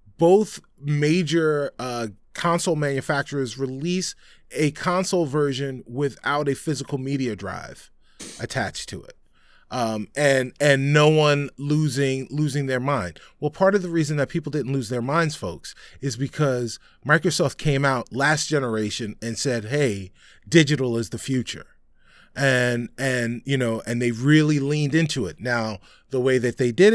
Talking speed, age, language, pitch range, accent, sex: 150 wpm, 30-49, English, 130-160 Hz, American, male